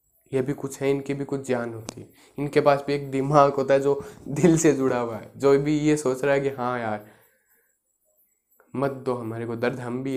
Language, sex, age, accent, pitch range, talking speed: Hindi, male, 20-39, native, 130-160 Hz, 225 wpm